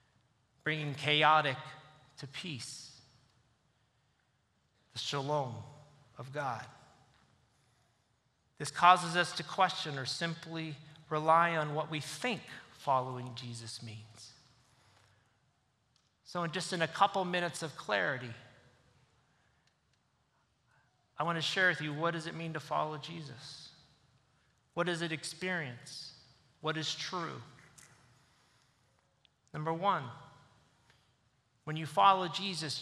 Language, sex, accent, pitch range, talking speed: English, male, American, 130-175 Hz, 105 wpm